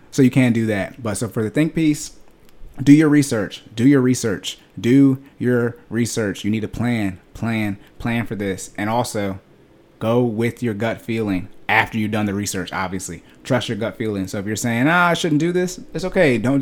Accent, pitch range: American, 100-125 Hz